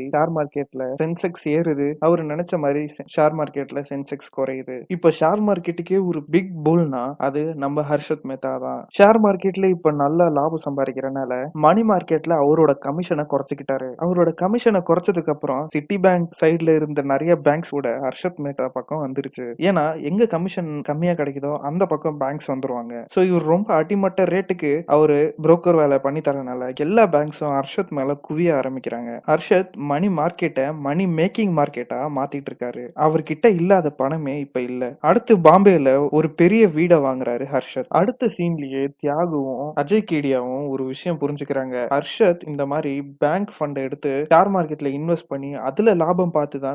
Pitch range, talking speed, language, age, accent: 140-170 Hz, 30 wpm, Tamil, 20-39, native